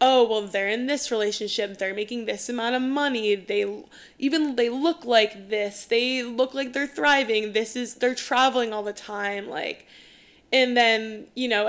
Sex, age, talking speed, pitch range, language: female, 10-29, 180 wpm, 210-255 Hz, English